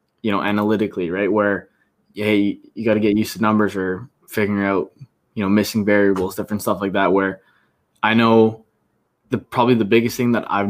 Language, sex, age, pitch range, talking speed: English, male, 20-39, 100-115 Hz, 185 wpm